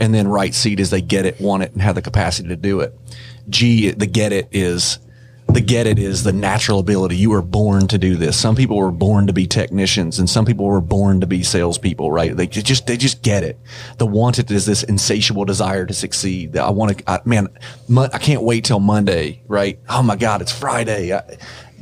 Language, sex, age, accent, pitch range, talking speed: English, male, 30-49, American, 100-120 Hz, 225 wpm